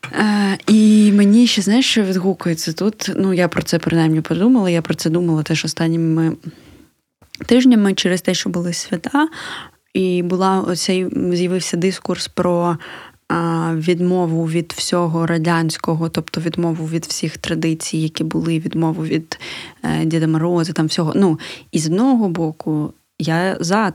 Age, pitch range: 20-39, 165-195 Hz